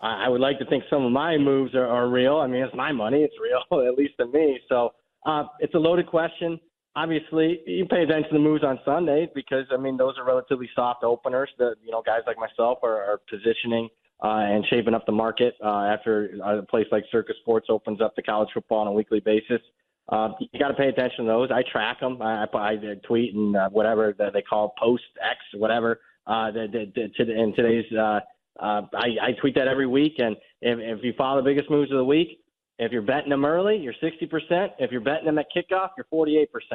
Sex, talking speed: male, 235 wpm